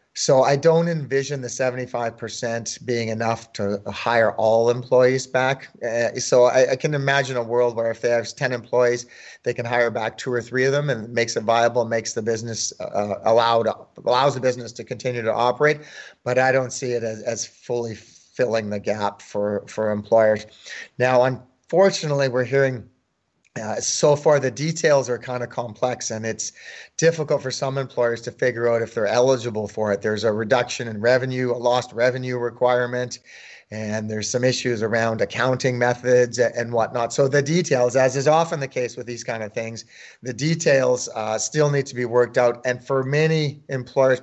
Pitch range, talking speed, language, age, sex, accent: 115-135 Hz, 190 wpm, English, 30-49, male, American